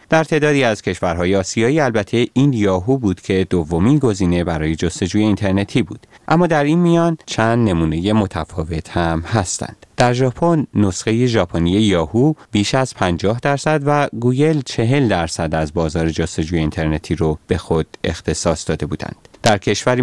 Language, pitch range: Persian, 90-125 Hz